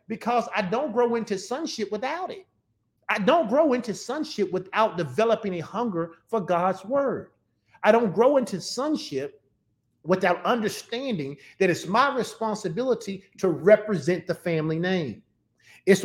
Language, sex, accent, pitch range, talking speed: English, male, American, 175-235 Hz, 140 wpm